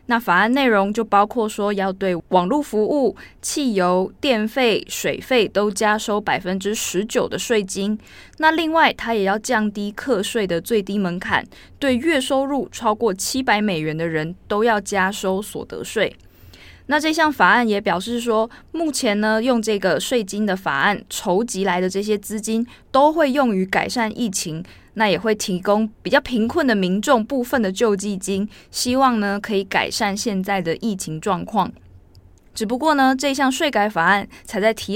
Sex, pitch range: female, 195-240 Hz